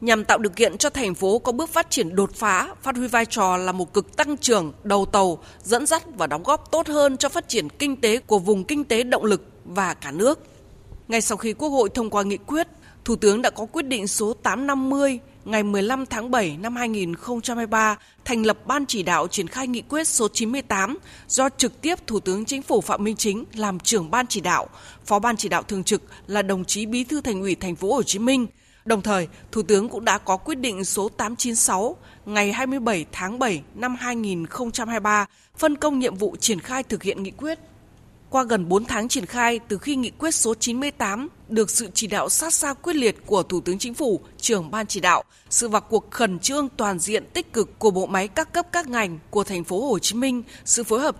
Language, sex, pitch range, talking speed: Vietnamese, female, 205-260 Hz, 225 wpm